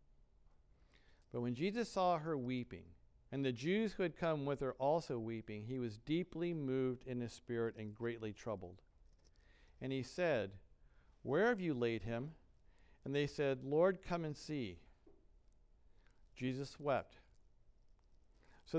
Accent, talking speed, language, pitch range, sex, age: American, 140 wpm, English, 115-175 Hz, male, 50-69